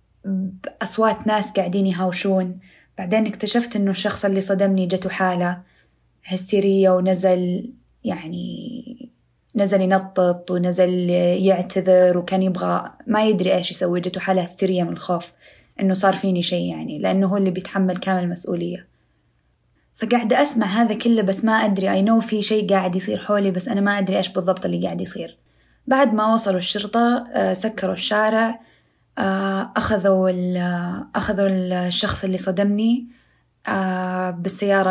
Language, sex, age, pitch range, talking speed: Arabic, female, 20-39, 185-215 Hz, 130 wpm